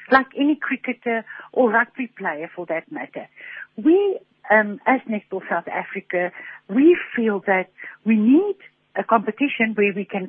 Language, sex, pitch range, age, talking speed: English, female, 185-255 Hz, 60-79, 145 wpm